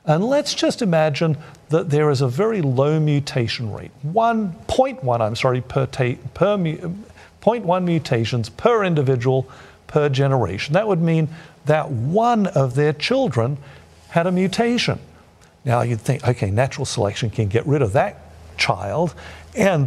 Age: 50-69